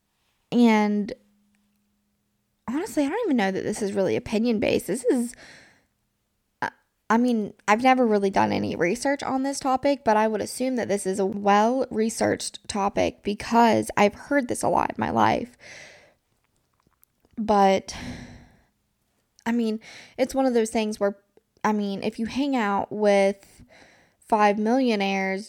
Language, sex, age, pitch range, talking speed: English, female, 10-29, 200-235 Hz, 150 wpm